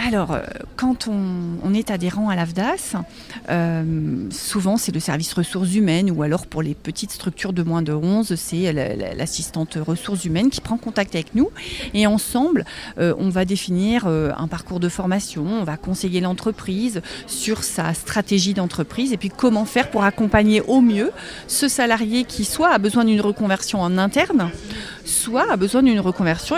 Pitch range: 180-235 Hz